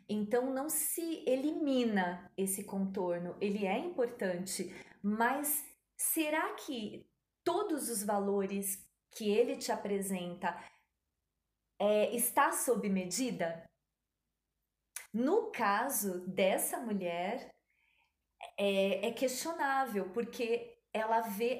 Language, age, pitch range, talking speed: Portuguese, 20-39, 195-270 Hz, 90 wpm